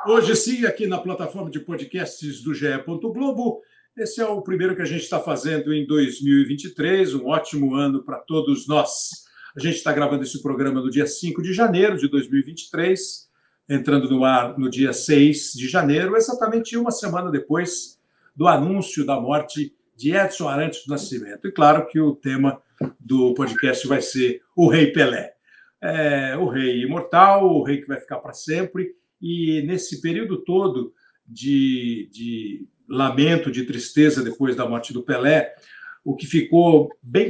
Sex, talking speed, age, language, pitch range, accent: male, 160 wpm, 60-79, Portuguese, 135-170 Hz, Brazilian